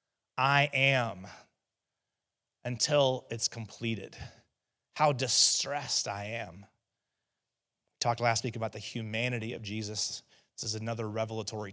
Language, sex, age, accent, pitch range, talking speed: English, male, 30-49, American, 110-135 Hz, 115 wpm